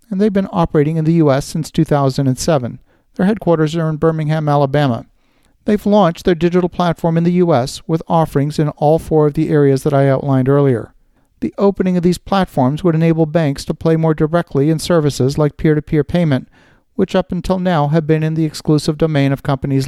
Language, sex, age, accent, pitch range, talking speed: English, male, 50-69, American, 140-170 Hz, 195 wpm